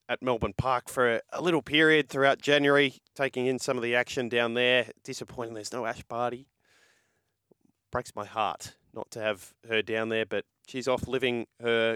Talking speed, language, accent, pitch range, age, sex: 180 wpm, English, Australian, 110-135 Hz, 20-39, male